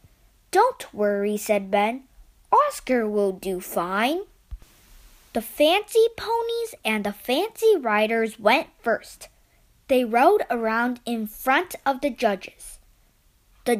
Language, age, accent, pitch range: Chinese, 20-39, American, 220-295 Hz